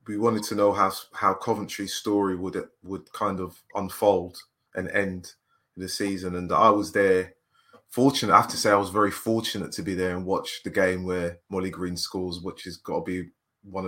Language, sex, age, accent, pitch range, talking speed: English, male, 20-39, British, 95-120 Hz, 210 wpm